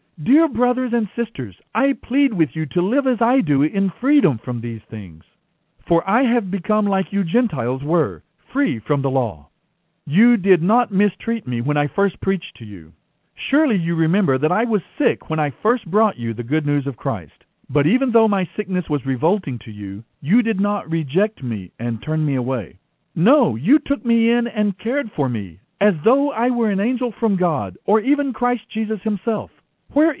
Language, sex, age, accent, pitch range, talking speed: English, male, 50-69, American, 145-225 Hz, 195 wpm